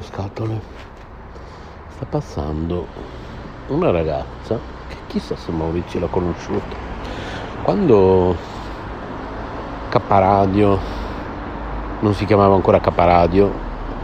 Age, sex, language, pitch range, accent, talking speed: 60-79, male, Italian, 85-105 Hz, native, 75 wpm